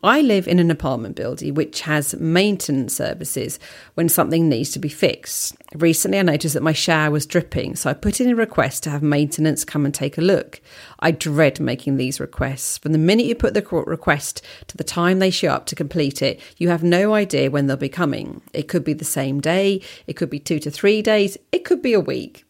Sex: female